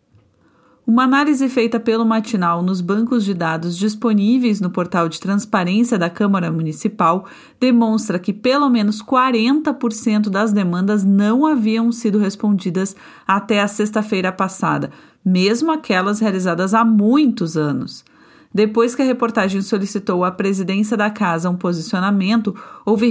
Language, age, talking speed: Portuguese, 40-59, 130 wpm